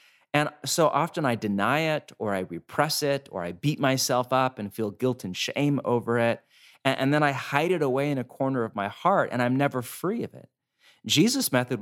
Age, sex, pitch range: 30-49, male, 110-140 Hz